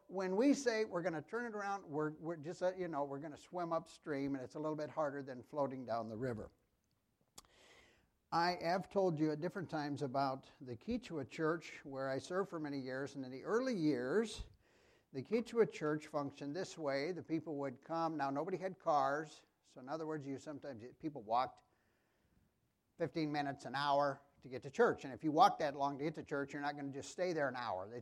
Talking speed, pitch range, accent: 220 wpm, 140-180 Hz, American